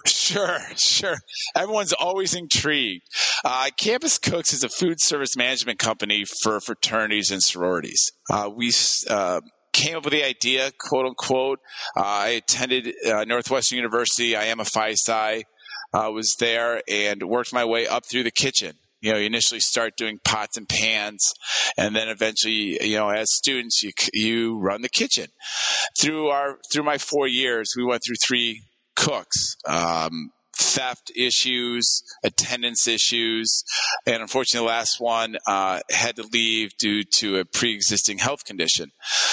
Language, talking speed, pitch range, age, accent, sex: English, 155 wpm, 110-130 Hz, 30-49, American, male